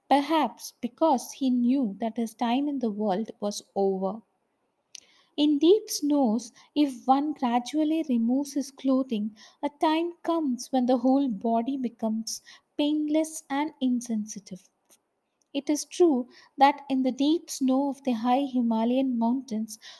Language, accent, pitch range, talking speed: English, Indian, 230-290 Hz, 135 wpm